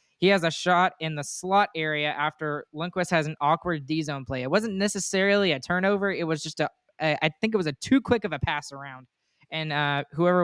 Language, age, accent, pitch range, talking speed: English, 20-39, American, 150-180 Hz, 220 wpm